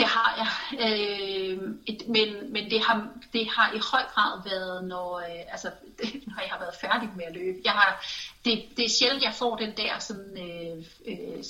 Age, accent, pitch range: 30-49, native, 185-230 Hz